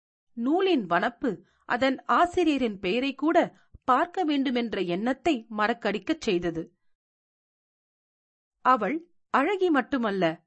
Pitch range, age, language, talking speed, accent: 190-290 Hz, 40-59, Tamil, 80 wpm, native